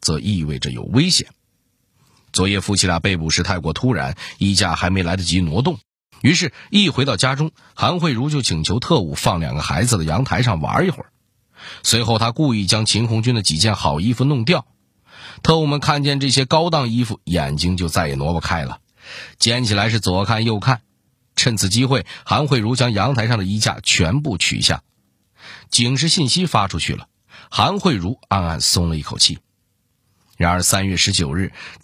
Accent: native